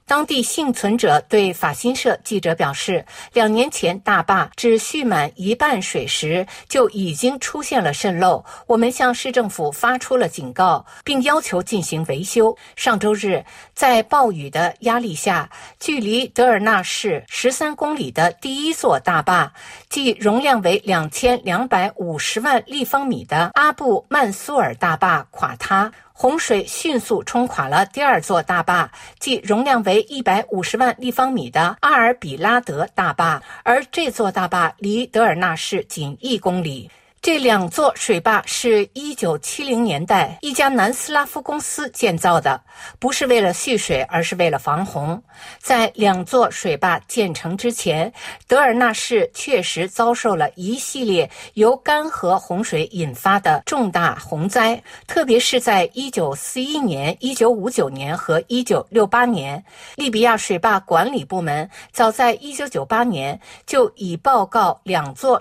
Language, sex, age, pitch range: Chinese, female, 50-69, 185-255 Hz